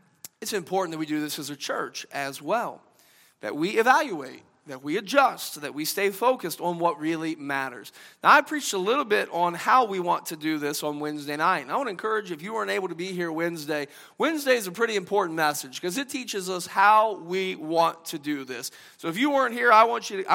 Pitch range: 175-245 Hz